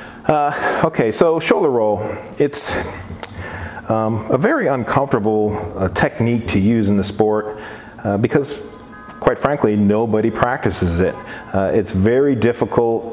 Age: 40-59